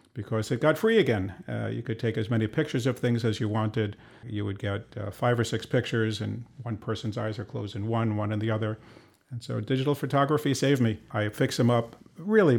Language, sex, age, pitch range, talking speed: English, male, 50-69, 110-130 Hz, 230 wpm